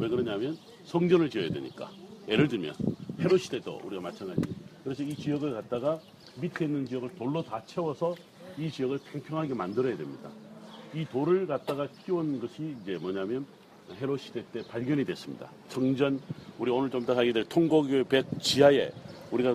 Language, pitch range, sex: Korean, 120-155 Hz, male